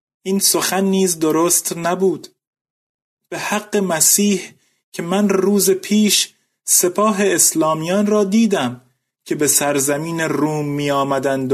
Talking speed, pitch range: 110 wpm, 140-195 Hz